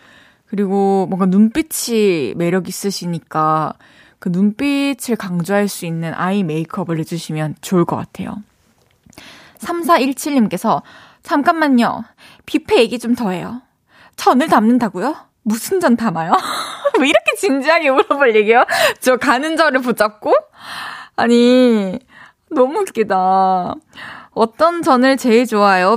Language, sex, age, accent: Korean, female, 20-39, native